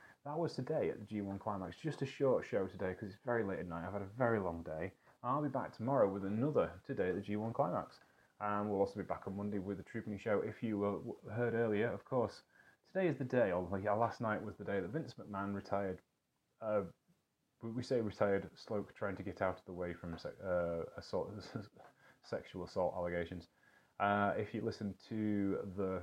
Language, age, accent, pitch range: English, 30-49, British, 95-115 Hz